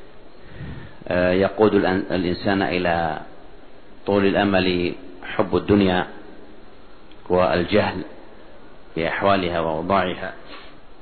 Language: Arabic